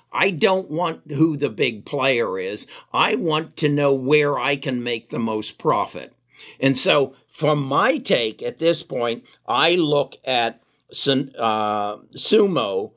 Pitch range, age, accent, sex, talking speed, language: 130-155 Hz, 60-79, American, male, 150 wpm, English